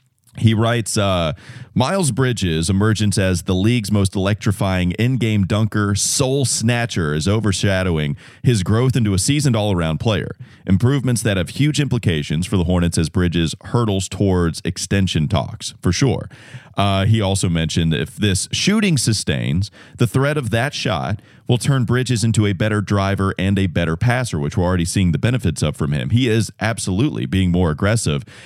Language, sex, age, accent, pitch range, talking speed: English, male, 30-49, American, 95-125 Hz, 170 wpm